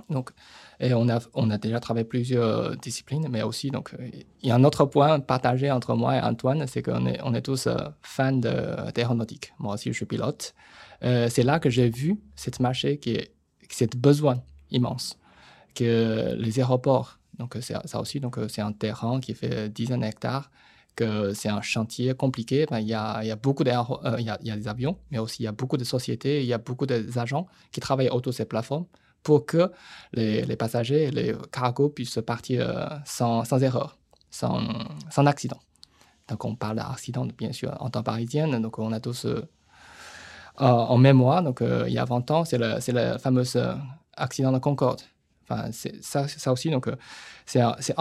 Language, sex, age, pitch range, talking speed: French, male, 20-39, 115-140 Hz, 205 wpm